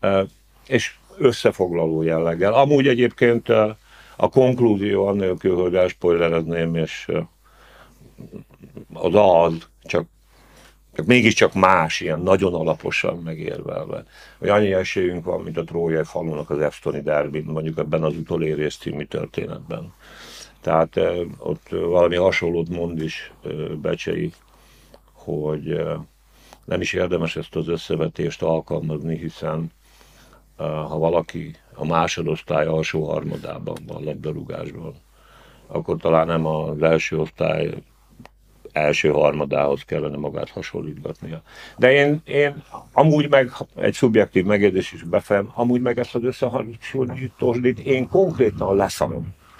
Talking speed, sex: 110 wpm, male